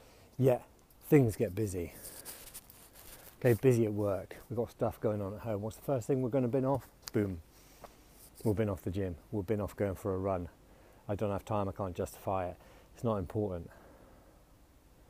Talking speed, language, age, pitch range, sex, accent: 190 wpm, English, 30-49, 100-120 Hz, male, British